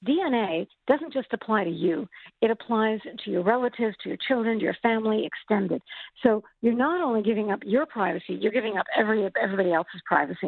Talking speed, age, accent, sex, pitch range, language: 190 wpm, 50-69, American, female, 215-285 Hz, English